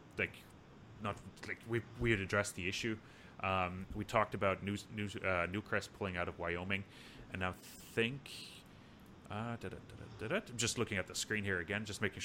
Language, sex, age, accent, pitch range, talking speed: English, male, 30-49, Canadian, 95-115 Hz, 200 wpm